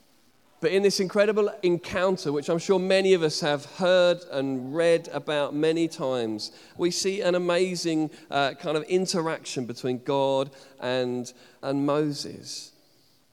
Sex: male